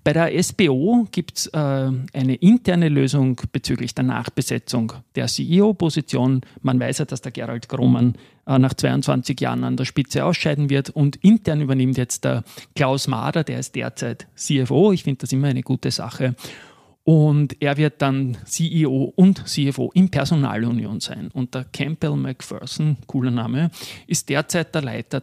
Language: German